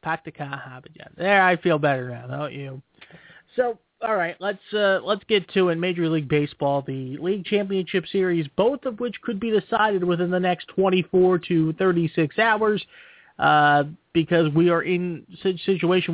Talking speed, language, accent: 165 wpm, English, American